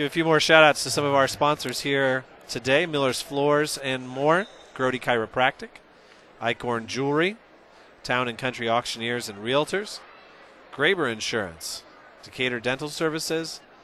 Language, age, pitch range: English, 40-59, 115-140 Hz